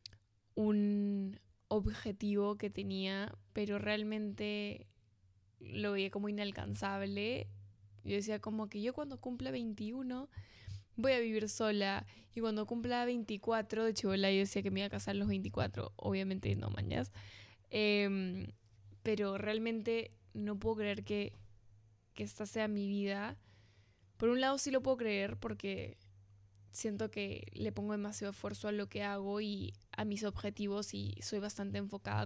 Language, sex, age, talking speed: Spanish, female, 10-29, 145 wpm